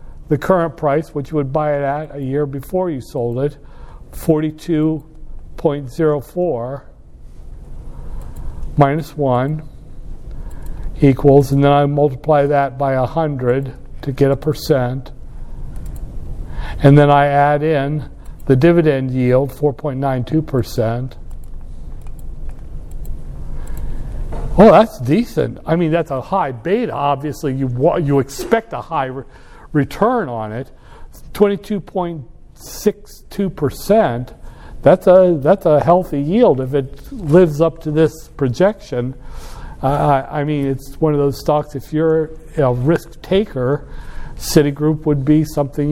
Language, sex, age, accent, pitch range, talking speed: English, male, 60-79, American, 125-155 Hz, 120 wpm